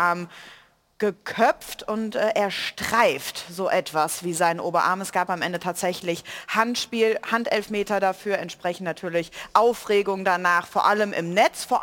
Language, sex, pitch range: German, female, 195-240 Hz